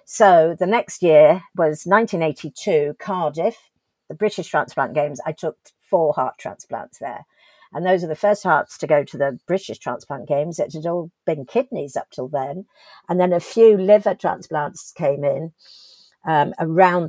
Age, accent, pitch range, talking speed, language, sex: 50-69, British, 150-185 Hz, 170 wpm, English, female